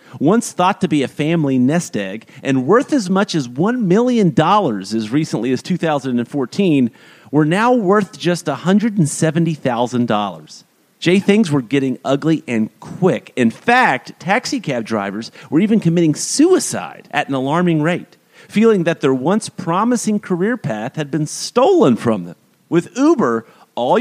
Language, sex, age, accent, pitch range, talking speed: English, male, 40-59, American, 135-210 Hz, 145 wpm